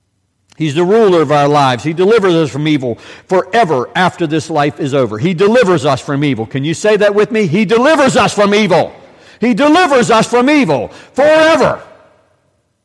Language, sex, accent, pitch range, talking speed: English, male, American, 140-215 Hz, 180 wpm